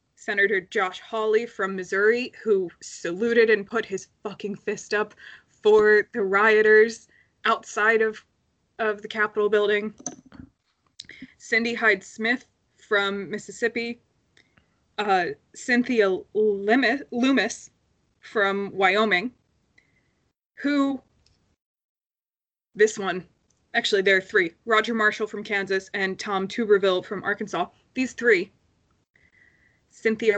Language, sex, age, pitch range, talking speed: English, female, 20-39, 200-255 Hz, 105 wpm